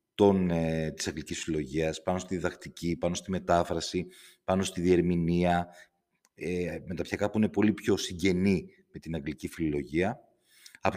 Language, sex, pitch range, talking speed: Greek, male, 85-105 Hz, 125 wpm